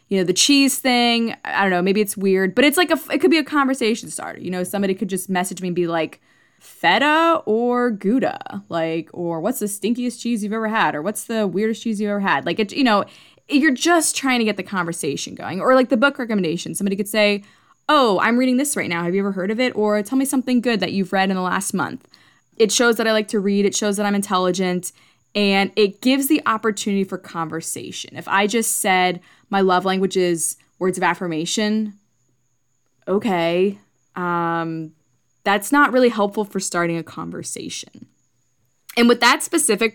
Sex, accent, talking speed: female, American, 210 wpm